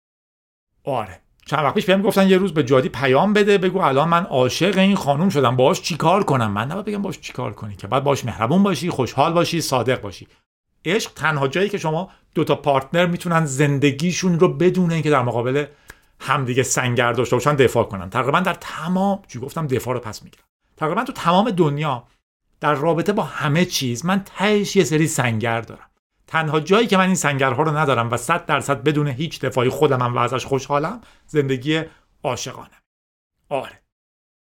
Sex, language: male, Persian